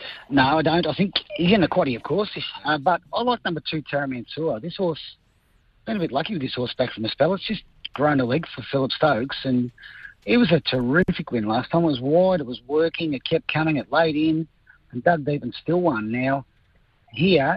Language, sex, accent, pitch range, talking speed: English, male, Australian, 130-165 Hz, 225 wpm